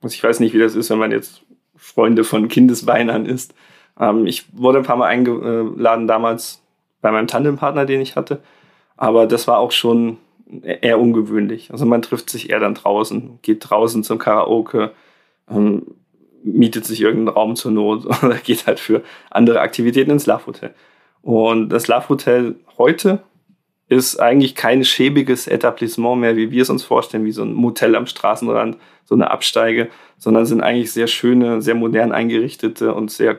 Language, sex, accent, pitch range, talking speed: German, male, German, 115-130 Hz, 170 wpm